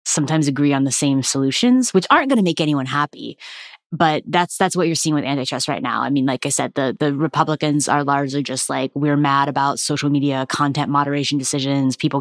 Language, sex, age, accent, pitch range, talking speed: English, female, 20-39, American, 145-195 Hz, 215 wpm